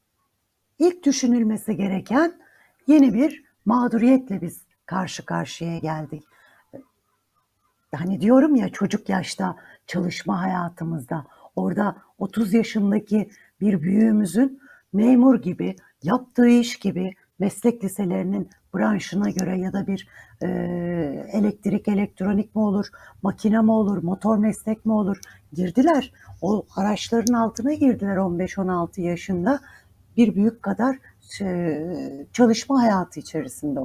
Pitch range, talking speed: 160-225 Hz, 105 wpm